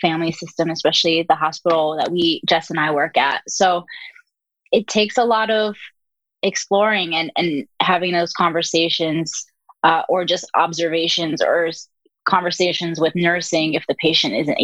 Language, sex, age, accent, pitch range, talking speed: English, female, 20-39, American, 165-195 Hz, 150 wpm